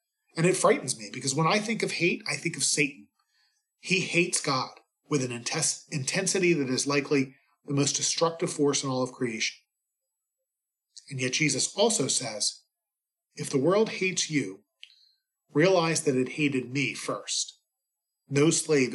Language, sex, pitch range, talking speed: English, male, 130-170 Hz, 155 wpm